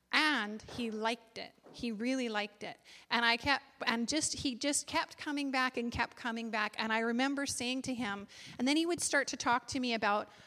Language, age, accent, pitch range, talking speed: English, 30-49, American, 230-270 Hz, 220 wpm